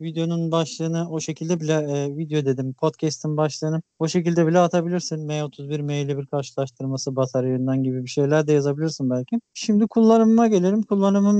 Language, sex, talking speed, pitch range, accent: Turkish, male, 165 wpm, 140-170 Hz, native